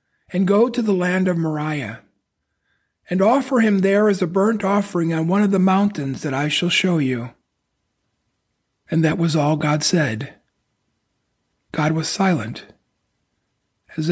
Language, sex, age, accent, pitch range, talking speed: English, male, 50-69, American, 150-200 Hz, 150 wpm